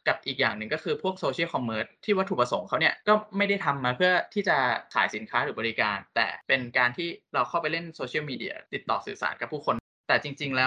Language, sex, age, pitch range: Thai, male, 20-39, 130-185 Hz